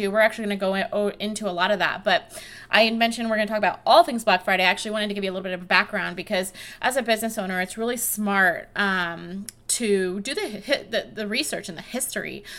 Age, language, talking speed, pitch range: 20-39, English, 245 wpm, 195-225 Hz